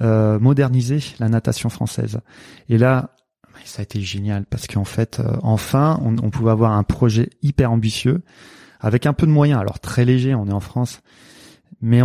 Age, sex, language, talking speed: 30-49, male, French, 175 wpm